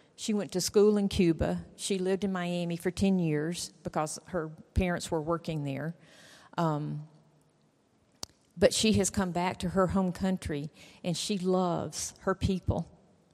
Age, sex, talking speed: 40-59, female, 155 wpm